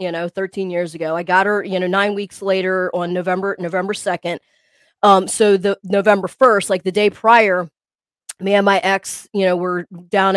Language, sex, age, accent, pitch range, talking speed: English, female, 20-39, American, 190-245 Hz, 195 wpm